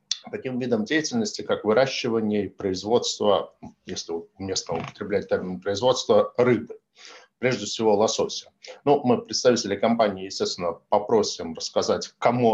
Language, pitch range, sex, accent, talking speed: Russian, 100-165 Hz, male, native, 115 wpm